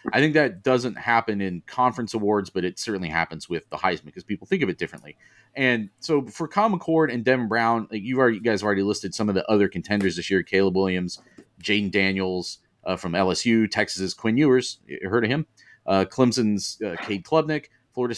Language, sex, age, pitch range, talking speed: English, male, 30-49, 95-125 Hz, 200 wpm